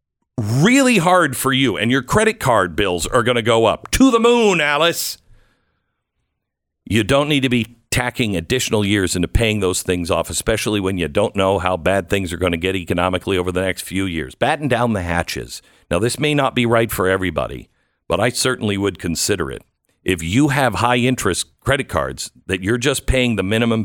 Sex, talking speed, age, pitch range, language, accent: male, 200 wpm, 50-69, 95-125 Hz, English, American